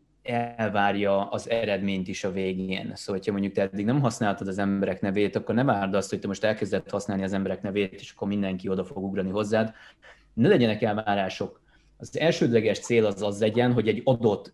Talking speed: 195 wpm